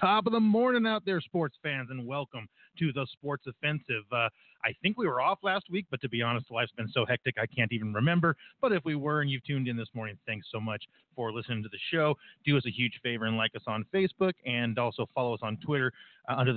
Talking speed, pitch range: 255 wpm, 120-155 Hz